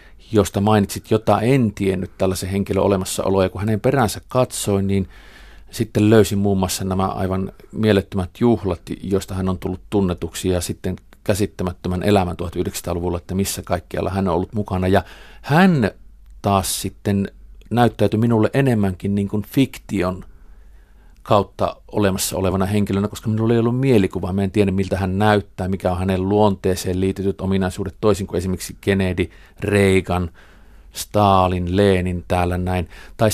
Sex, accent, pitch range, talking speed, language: male, native, 95-105 Hz, 145 wpm, Finnish